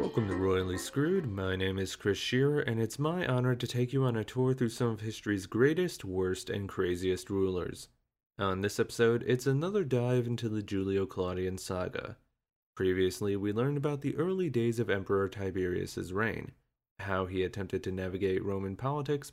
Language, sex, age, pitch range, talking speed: English, male, 30-49, 95-135 Hz, 175 wpm